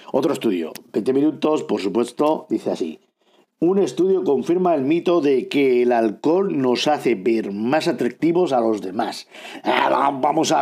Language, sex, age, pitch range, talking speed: Spanish, male, 50-69, 115-190 Hz, 155 wpm